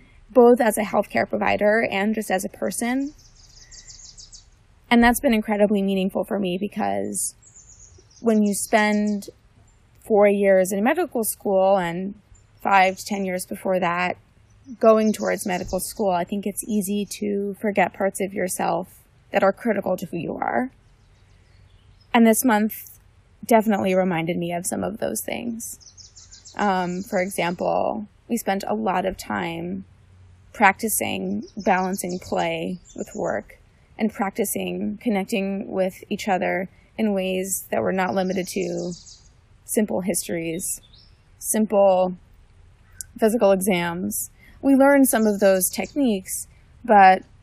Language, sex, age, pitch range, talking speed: English, female, 20-39, 170-210 Hz, 130 wpm